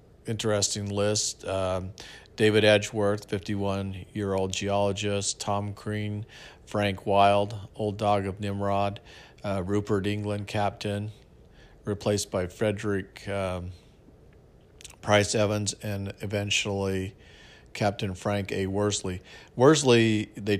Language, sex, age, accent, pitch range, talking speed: English, male, 50-69, American, 95-105 Hz, 100 wpm